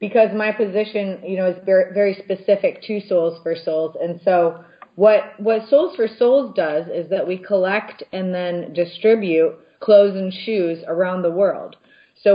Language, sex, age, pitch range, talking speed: English, female, 30-49, 165-210 Hz, 165 wpm